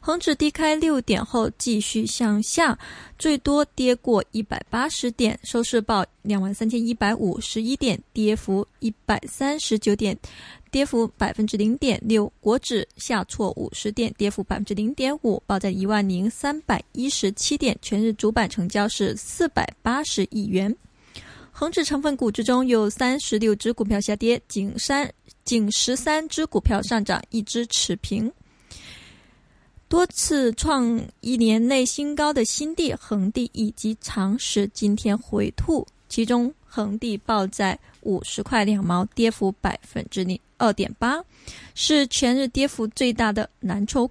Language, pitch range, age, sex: Chinese, 210-260 Hz, 20-39, female